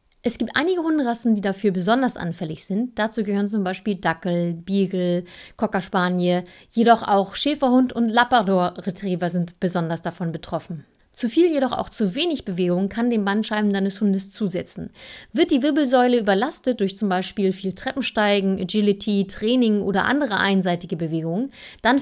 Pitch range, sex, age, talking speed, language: 185-245 Hz, female, 30-49, 150 wpm, German